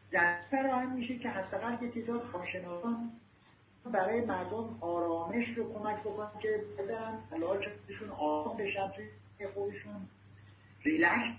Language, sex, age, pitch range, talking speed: Persian, male, 50-69, 145-235 Hz, 110 wpm